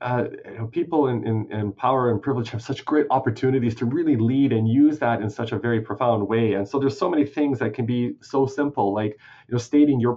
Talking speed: 240 wpm